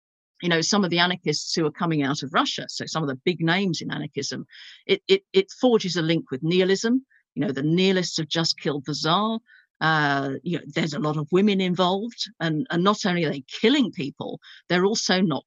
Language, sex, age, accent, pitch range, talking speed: English, female, 50-69, British, 160-225 Hz, 220 wpm